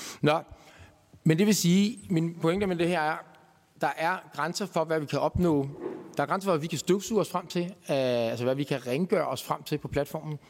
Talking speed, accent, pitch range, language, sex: 240 wpm, native, 140-175 Hz, Danish, male